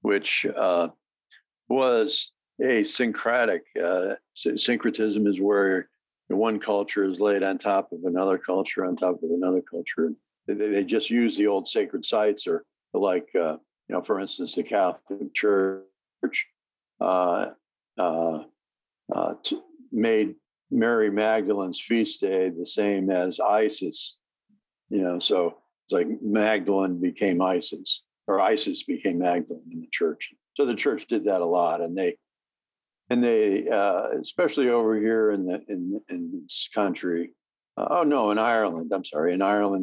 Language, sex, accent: English, male, American